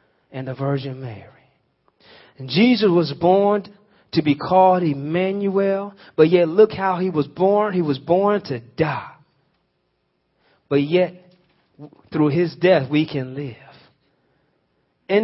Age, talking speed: 40-59, 130 wpm